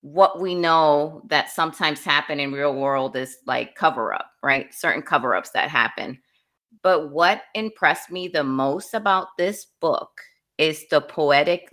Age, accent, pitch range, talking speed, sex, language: 30-49, American, 140-175 Hz, 160 wpm, female, English